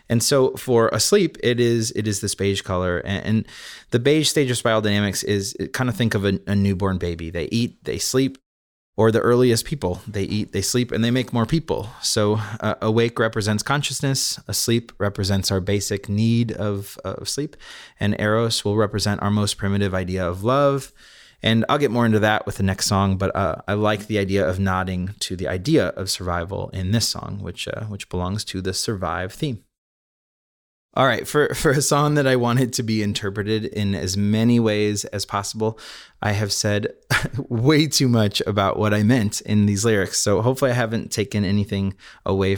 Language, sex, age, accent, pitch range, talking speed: English, male, 30-49, American, 95-115 Hz, 200 wpm